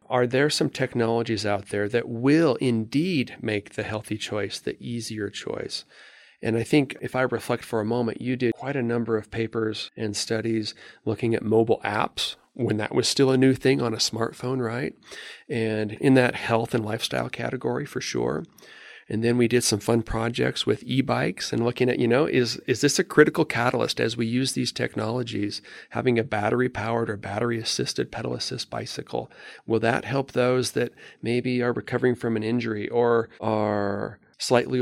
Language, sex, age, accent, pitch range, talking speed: English, male, 40-59, American, 110-130 Hz, 180 wpm